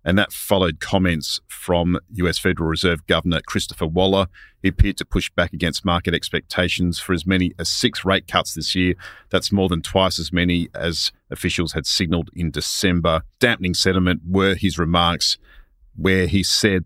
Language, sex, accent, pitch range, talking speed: English, male, Australian, 85-95 Hz, 170 wpm